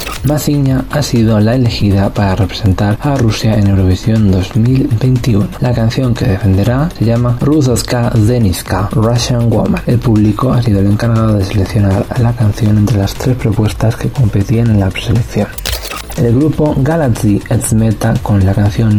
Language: Spanish